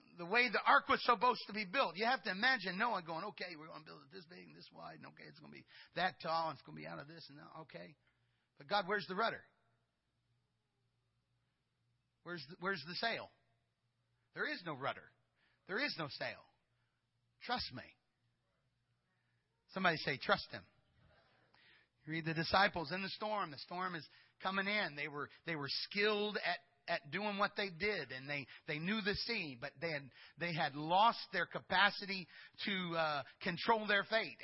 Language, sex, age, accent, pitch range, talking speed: English, male, 40-59, American, 145-230 Hz, 195 wpm